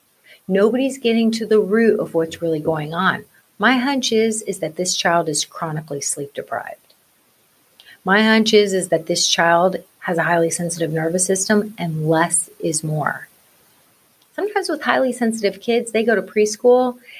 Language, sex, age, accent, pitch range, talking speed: English, female, 30-49, American, 175-225 Hz, 165 wpm